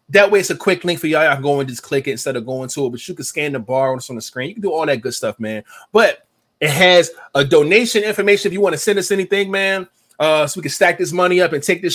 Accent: American